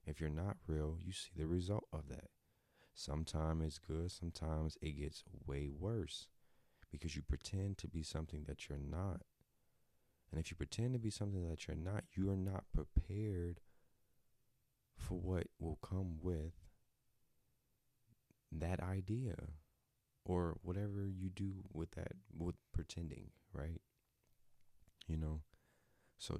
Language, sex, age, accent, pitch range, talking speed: English, male, 30-49, American, 75-105 Hz, 135 wpm